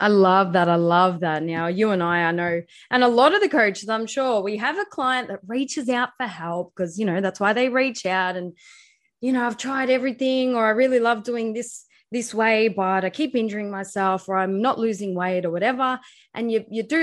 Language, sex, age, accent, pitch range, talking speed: English, female, 20-39, Australian, 200-260 Hz, 235 wpm